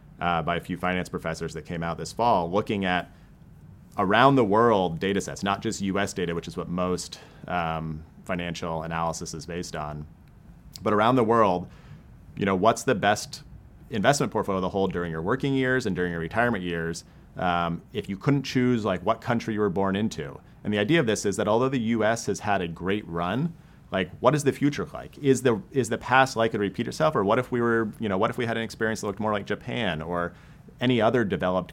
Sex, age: male, 30-49